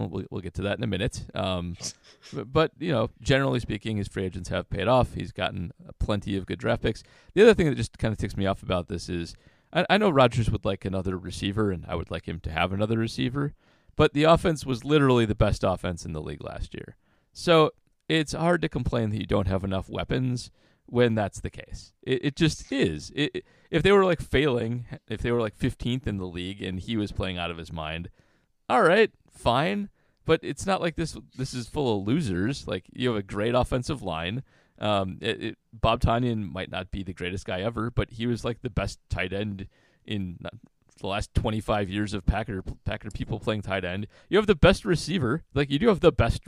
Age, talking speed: 30-49, 225 wpm